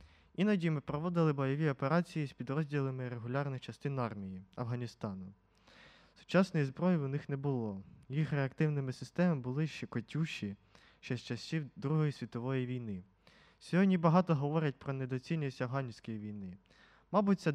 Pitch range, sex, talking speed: 120-155 Hz, male, 130 wpm